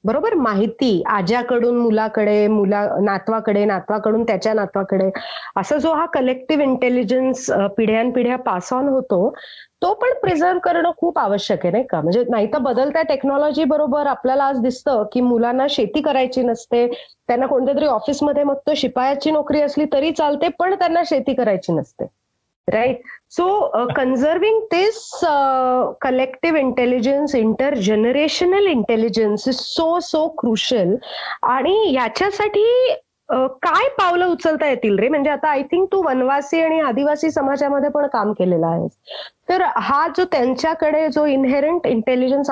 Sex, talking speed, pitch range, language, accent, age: female, 145 wpm, 230-310 Hz, Marathi, native, 30-49